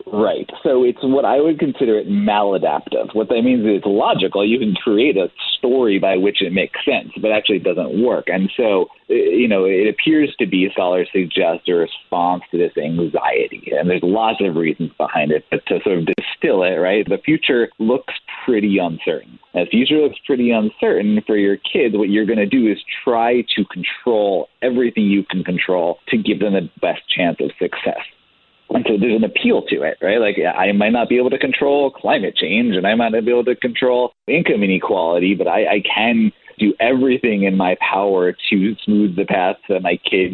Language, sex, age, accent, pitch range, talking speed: English, male, 40-59, American, 95-125 Hz, 205 wpm